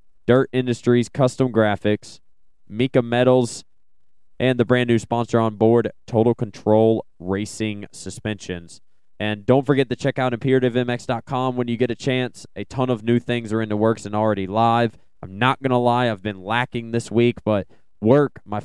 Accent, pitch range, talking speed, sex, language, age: American, 105-125 Hz, 170 wpm, male, English, 20-39